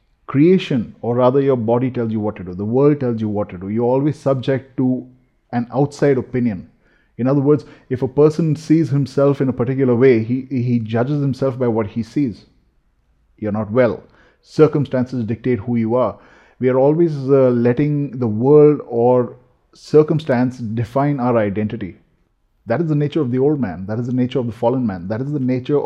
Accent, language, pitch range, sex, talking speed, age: Indian, English, 120-150 Hz, male, 195 wpm, 30-49